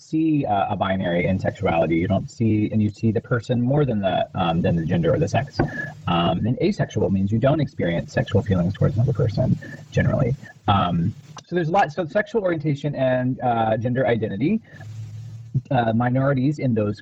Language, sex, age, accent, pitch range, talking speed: English, male, 30-49, American, 110-145 Hz, 180 wpm